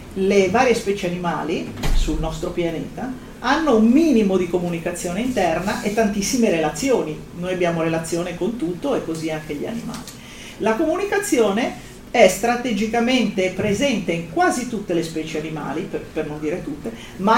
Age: 40-59